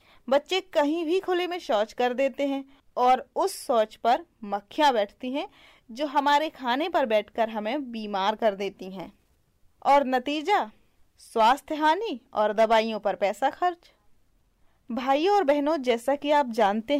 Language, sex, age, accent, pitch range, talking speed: English, female, 20-39, Indian, 220-310 Hz, 145 wpm